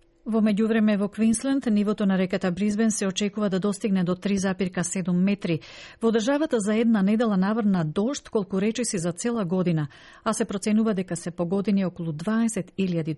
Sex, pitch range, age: female, 170-210 Hz, 40-59